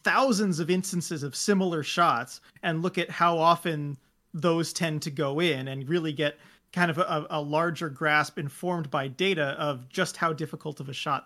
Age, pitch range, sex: 30-49, 150-185 Hz, male